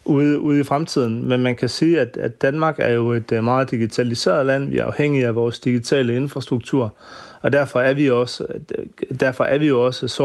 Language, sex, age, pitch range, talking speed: Danish, male, 30-49, 120-140 Hz, 180 wpm